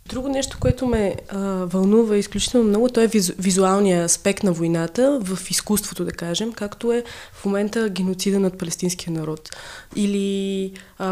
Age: 20-39